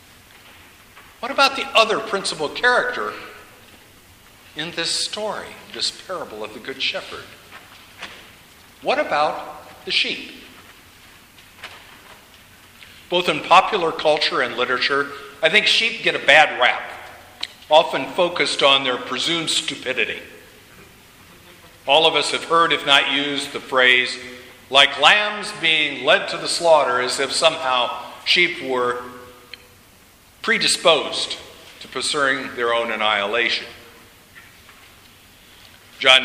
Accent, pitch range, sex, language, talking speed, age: American, 120-160 Hz, male, English, 110 wpm, 50-69